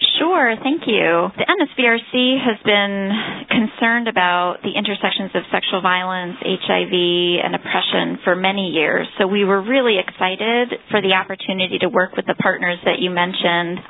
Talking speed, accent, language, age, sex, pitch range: 155 wpm, American, English, 30-49, female, 190-230 Hz